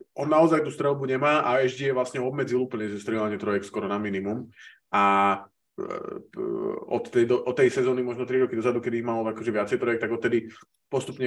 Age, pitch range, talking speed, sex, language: 20-39, 115-145 Hz, 195 wpm, male, Slovak